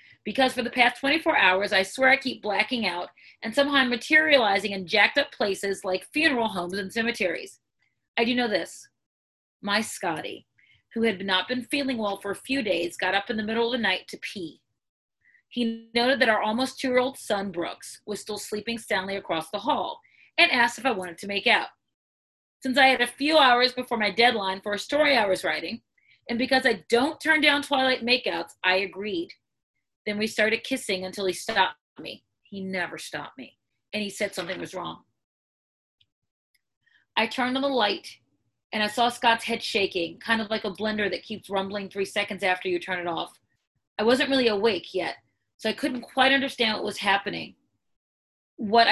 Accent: American